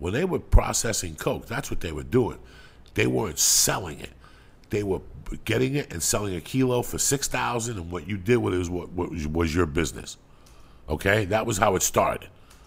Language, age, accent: English, 50-69, American